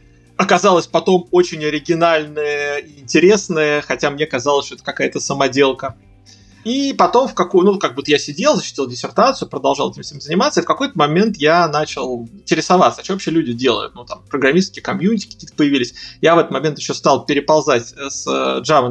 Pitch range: 135-195 Hz